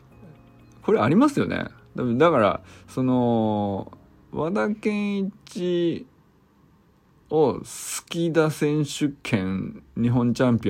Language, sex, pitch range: Japanese, male, 105-170 Hz